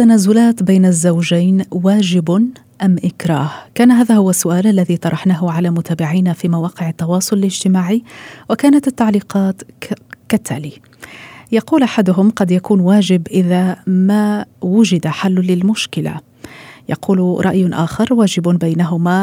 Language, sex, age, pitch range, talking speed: Arabic, female, 30-49, 175-210 Hz, 110 wpm